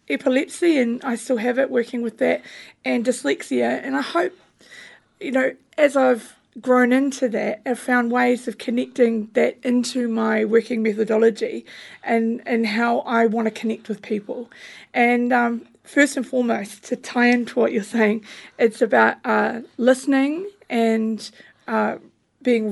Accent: Australian